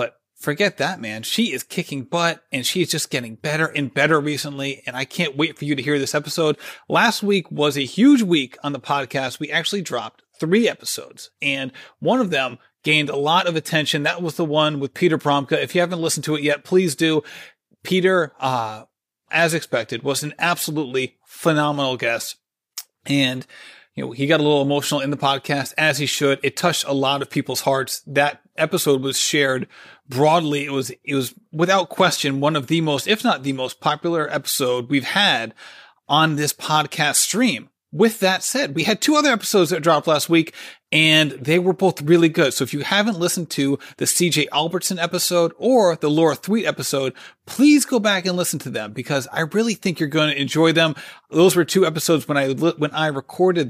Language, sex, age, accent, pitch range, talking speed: English, male, 30-49, American, 140-175 Hz, 200 wpm